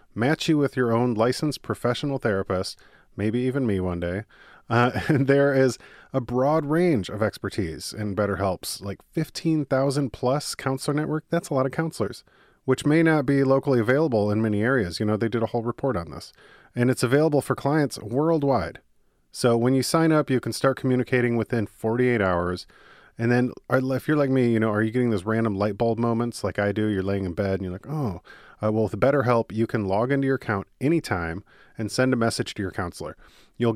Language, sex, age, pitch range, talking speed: English, male, 30-49, 105-130 Hz, 210 wpm